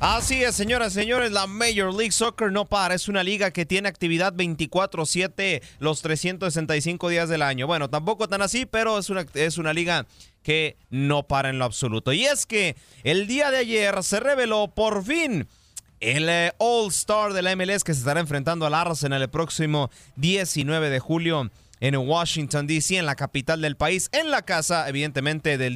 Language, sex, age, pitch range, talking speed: Spanish, male, 30-49, 140-190 Hz, 185 wpm